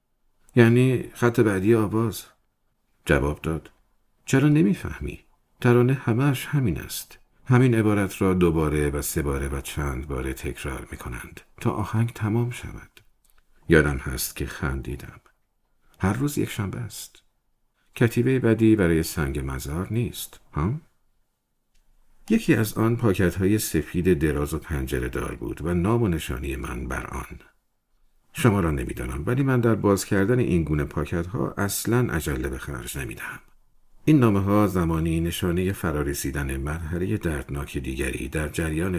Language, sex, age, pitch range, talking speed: Persian, male, 50-69, 70-110 Hz, 135 wpm